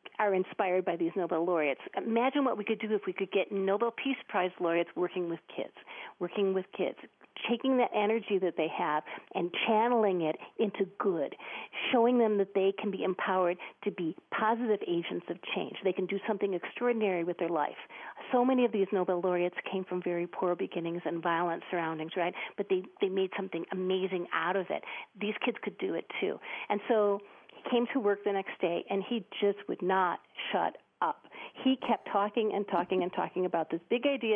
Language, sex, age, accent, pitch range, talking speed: English, female, 40-59, American, 175-210 Hz, 195 wpm